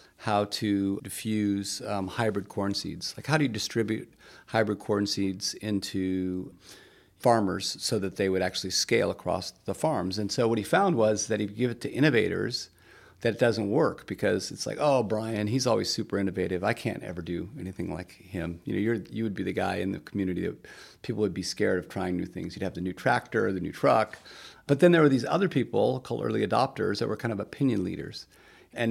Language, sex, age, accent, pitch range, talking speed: English, male, 40-59, American, 95-110 Hz, 210 wpm